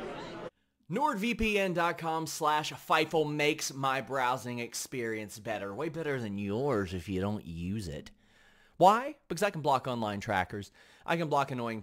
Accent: American